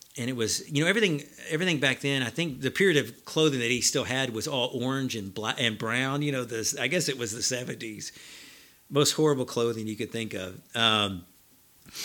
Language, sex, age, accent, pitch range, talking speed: English, male, 50-69, American, 120-150 Hz, 210 wpm